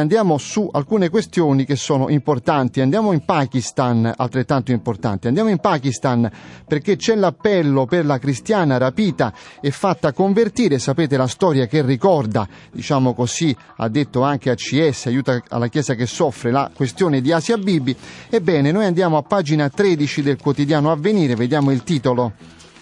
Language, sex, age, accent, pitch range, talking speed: Italian, male, 30-49, native, 135-175 Hz, 155 wpm